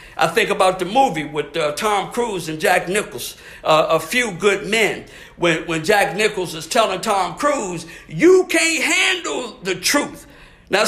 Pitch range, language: 180-290 Hz, English